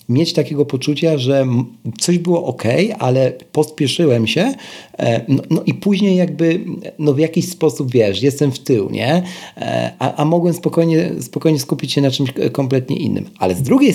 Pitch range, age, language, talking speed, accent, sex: 110-165 Hz, 40-59, Polish, 165 wpm, native, male